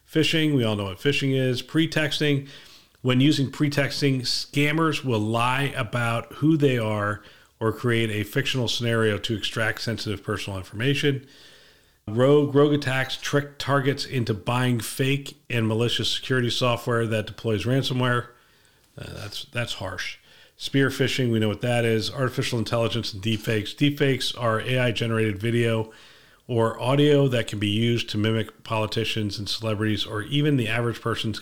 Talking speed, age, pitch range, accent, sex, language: 150 wpm, 40-59, 110-140 Hz, American, male, English